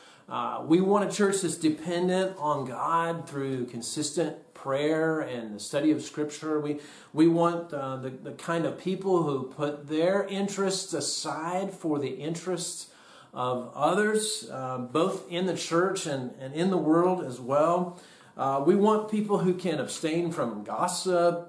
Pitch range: 135-170 Hz